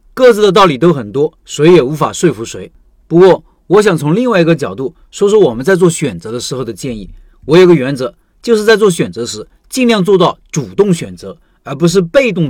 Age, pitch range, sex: 40-59, 155-200 Hz, male